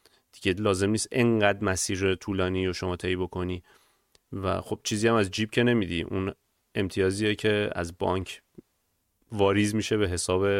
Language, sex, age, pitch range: Persian, male, 30-49, 100-125 Hz